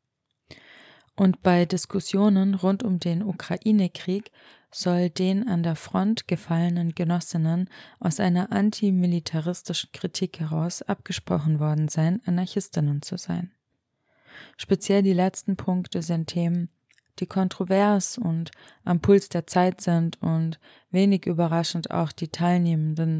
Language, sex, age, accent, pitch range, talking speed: German, female, 20-39, German, 160-185 Hz, 115 wpm